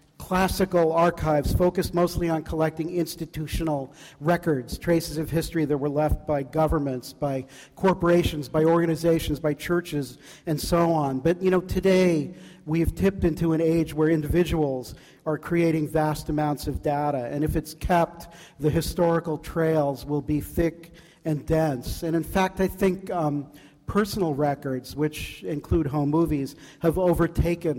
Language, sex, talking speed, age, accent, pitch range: English, male, 145 wpm, 50-69, American, 145-165 Hz